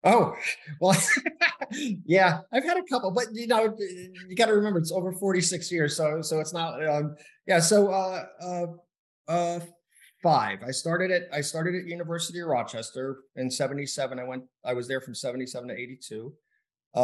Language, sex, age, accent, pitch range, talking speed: English, male, 30-49, American, 125-170 Hz, 175 wpm